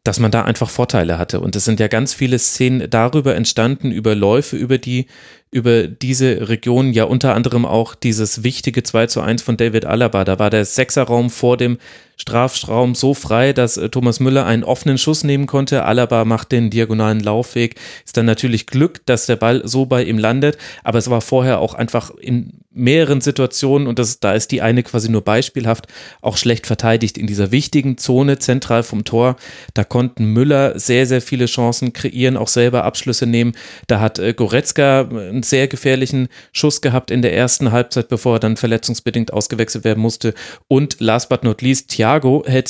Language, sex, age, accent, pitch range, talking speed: German, male, 30-49, German, 115-130 Hz, 185 wpm